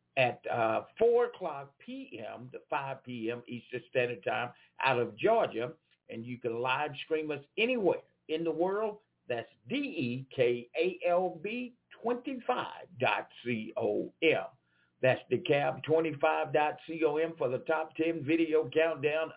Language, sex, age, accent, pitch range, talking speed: English, male, 60-79, American, 130-180 Hz, 110 wpm